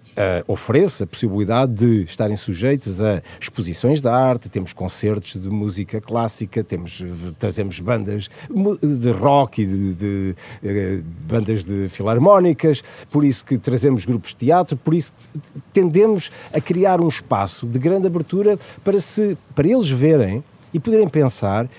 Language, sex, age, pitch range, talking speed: Portuguese, male, 50-69, 115-180 Hz, 140 wpm